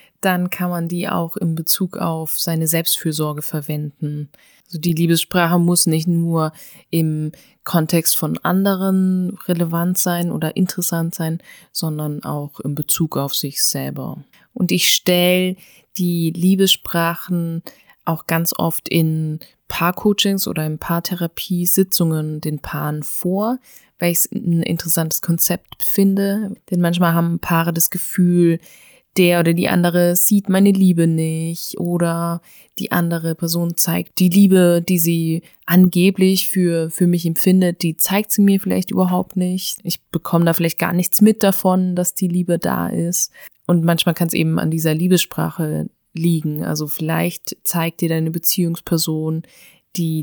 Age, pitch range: 20-39, 165-180 Hz